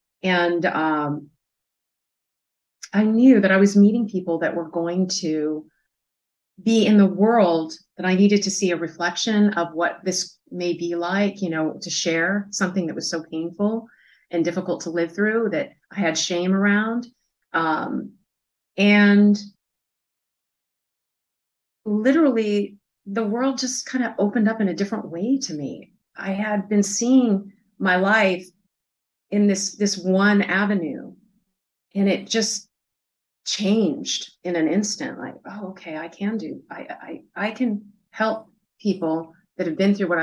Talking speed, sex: 150 wpm, female